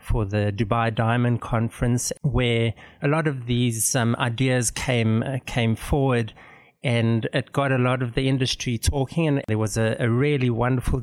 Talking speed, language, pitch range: 175 wpm, English, 115-135 Hz